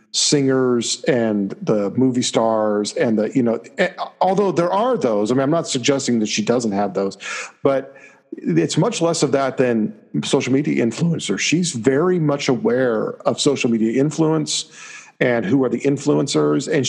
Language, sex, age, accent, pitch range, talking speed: English, male, 50-69, American, 125-150 Hz, 165 wpm